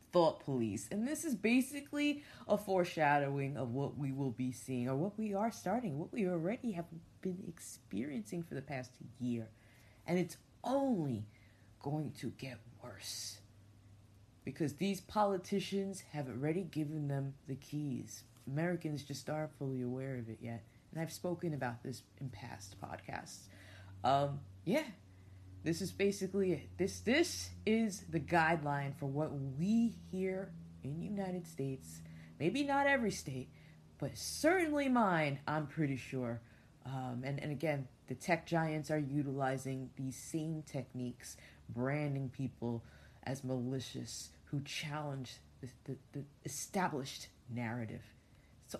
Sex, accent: female, American